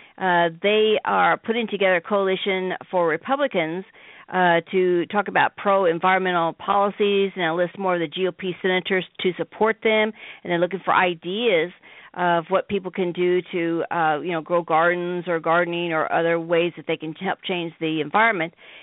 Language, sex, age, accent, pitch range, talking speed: English, female, 50-69, American, 175-215 Hz, 170 wpm